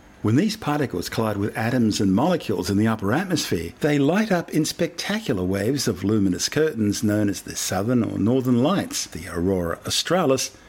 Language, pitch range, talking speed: English, 100-135 Hz, 175 wpm